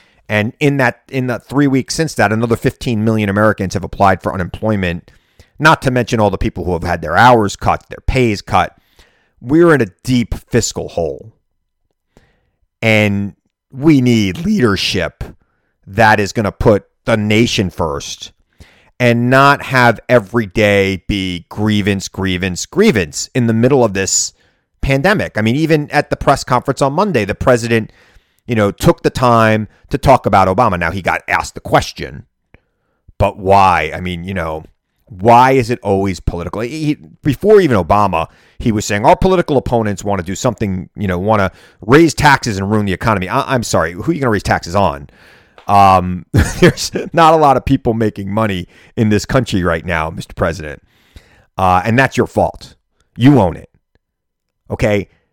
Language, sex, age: English, male, 30-49